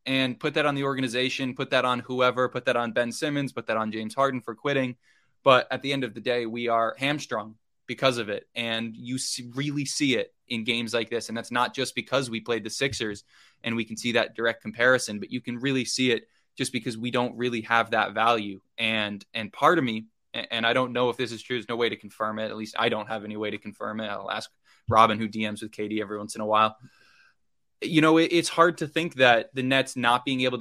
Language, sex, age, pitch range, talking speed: English, male, 20-39, 110-130 Hz, 255 wpm